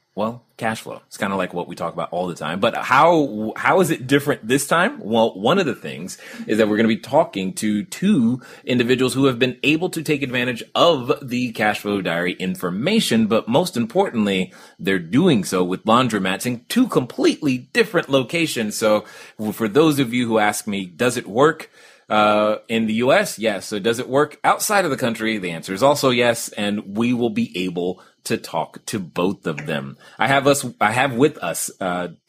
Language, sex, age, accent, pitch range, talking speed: English, male, 30-49, American, 100-140 Hz, 210 wpm